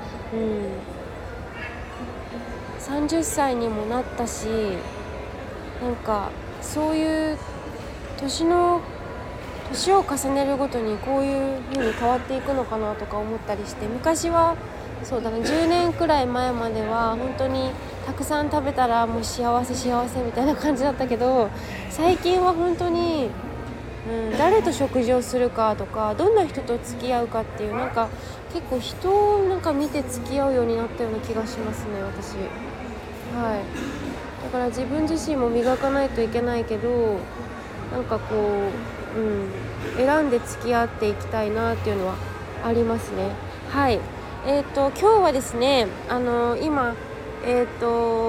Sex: female